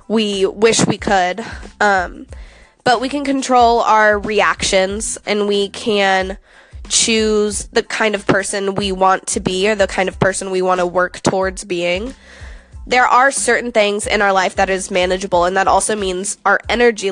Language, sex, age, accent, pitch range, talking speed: English, female, 10-29, American, 195-220 Hz, 175 wpm